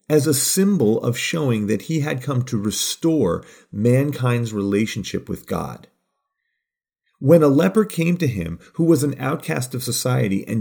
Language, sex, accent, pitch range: English, male, American, 120-160 Hz